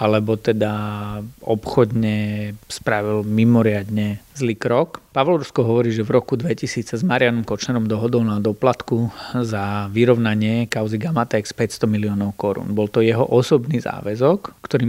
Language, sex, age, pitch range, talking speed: Slovak, male, 40-59, 105-120 Hz, 135 wpm